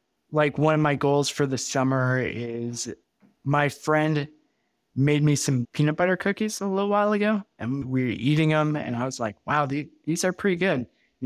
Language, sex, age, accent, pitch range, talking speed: English, male, 20-39, American, 115-145 Hz, 195 wpm